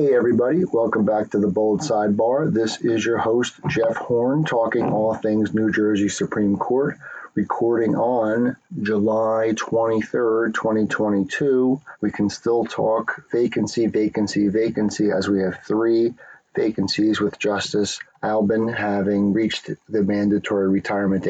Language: English